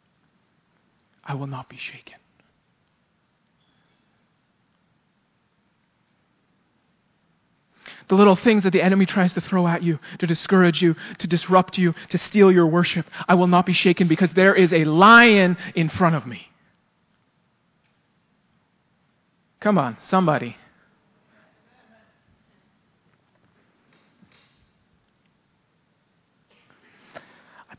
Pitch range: 150-200 Hz